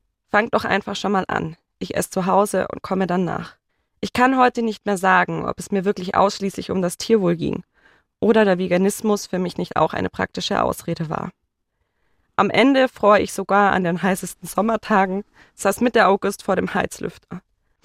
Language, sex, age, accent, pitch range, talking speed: German, female, 20-39, German, 190-225 Hz, 185 wpm